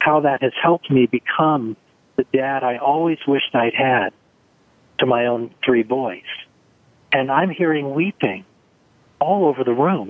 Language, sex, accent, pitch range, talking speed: English, male, American, 115-145 Hz, 155 wpm